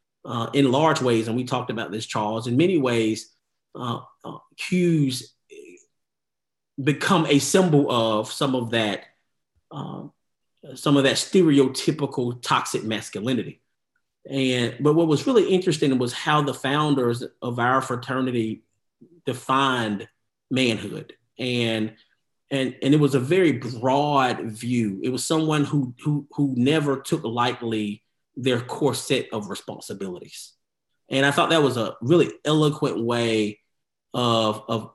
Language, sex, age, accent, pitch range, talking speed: English, male, 40-59, American, 115-150 Hz, 135 wpm